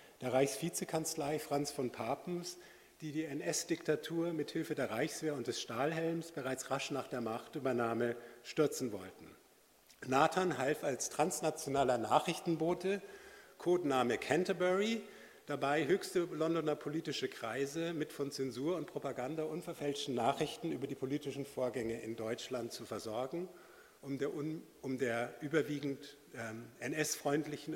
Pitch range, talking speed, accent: 130-160 Hz, 120 wpm, German